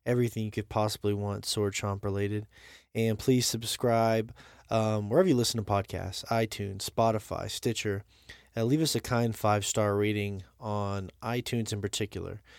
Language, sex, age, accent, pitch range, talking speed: English, male, 20-39, American, 100-120 Hz, 150 wpm